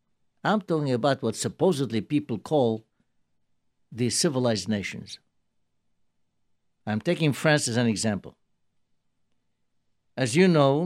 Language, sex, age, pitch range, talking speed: English, male, 60-79, 105-150 Hz, 105 wpm